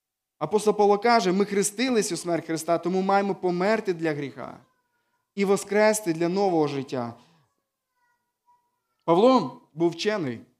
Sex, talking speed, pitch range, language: male, 120 wpm, 165-220 Hz, Ukrainian